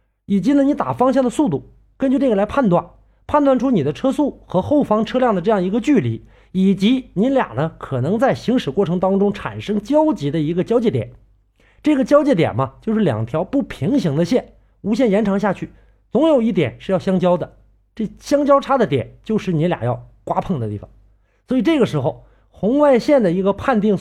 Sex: male